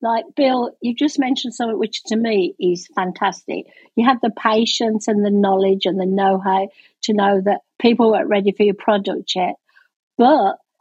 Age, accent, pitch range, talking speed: 50-69, British, 200-235 Hz, 180 wpm